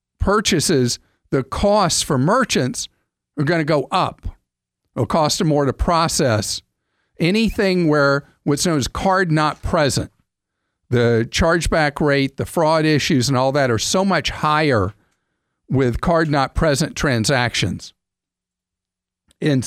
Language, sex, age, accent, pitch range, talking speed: English, male, 50-69, American, 120-170 Hz, 130 wpm